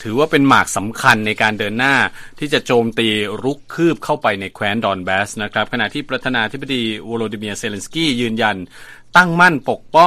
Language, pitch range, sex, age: Thai, 105-135 Hz, male, 30-49